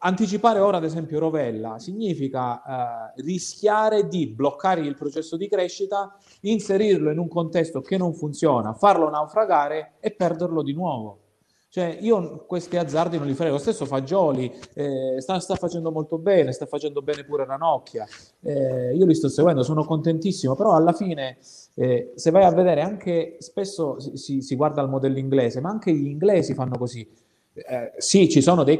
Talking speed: 175 wpm